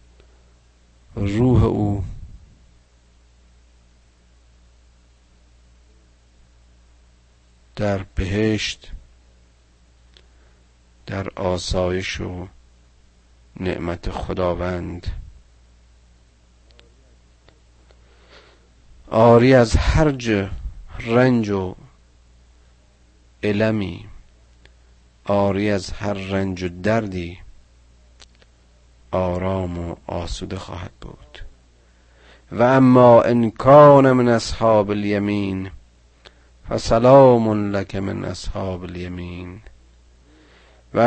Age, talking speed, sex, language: 50-69, 55 wpm, male, Persian